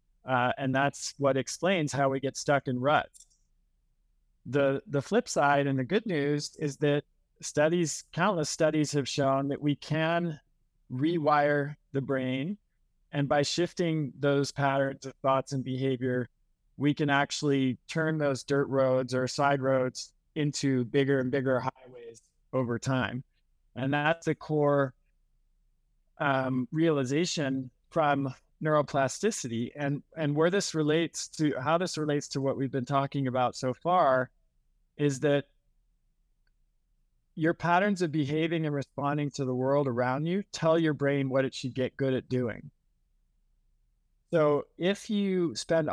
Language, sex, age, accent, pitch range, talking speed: English, male, 20-39, American, 130-155 Hz, 145 wpm